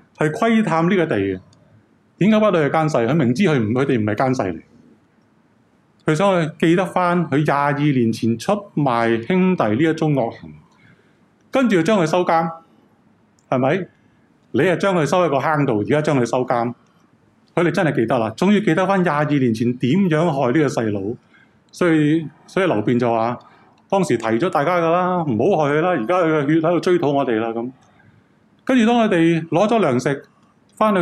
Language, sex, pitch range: Chinese, male, 125-180 Hz